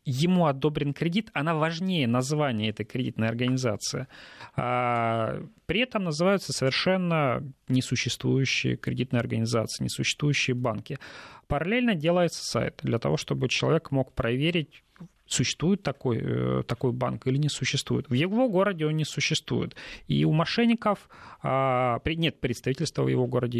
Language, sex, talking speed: Russian, male, 120 wpm